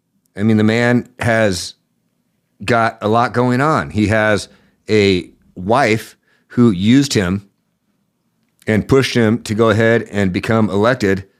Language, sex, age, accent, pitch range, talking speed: English, male, 50-69, American, 100-125 Hz, 135 wpm